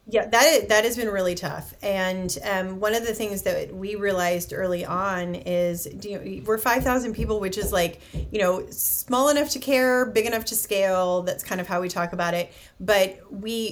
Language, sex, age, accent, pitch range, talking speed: English, female, 30-49, American, 175-215 Hz, 210 wpm